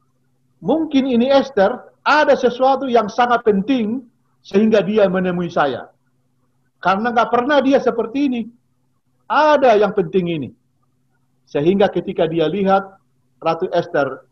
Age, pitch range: 50-69, 130-195 Hz